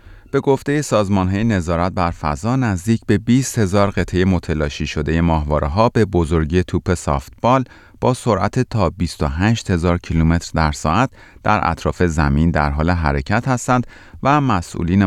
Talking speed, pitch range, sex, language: 140 wpm, 80-105 Hz, male, Persian